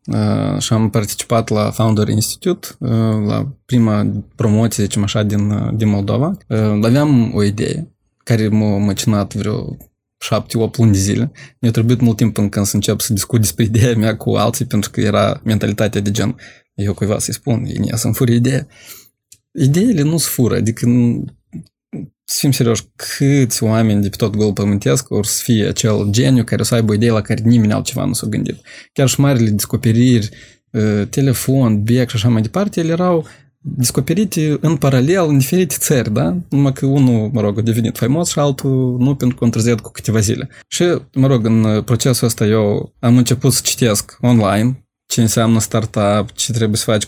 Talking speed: 185 wpm